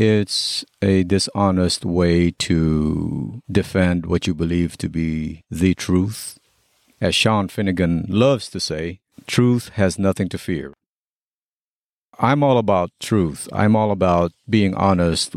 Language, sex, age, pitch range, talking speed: English, male, 50-69, 85-110 Hz, 130 wpm